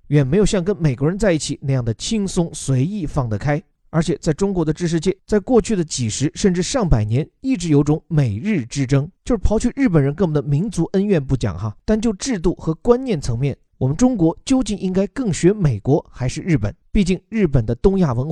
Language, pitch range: Chinese, 130-190 Hz